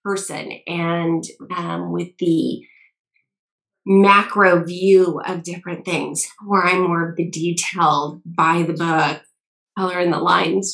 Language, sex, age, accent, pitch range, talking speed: English, female, 30-49, American, 170-185 Hz, 130 wpm